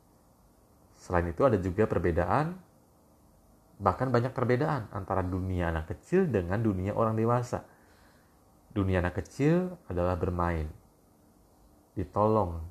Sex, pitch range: male, 85-105 Hz